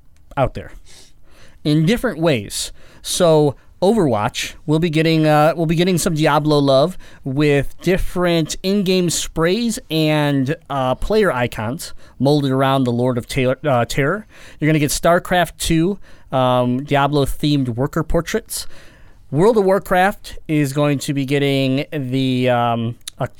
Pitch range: 120-165 Hz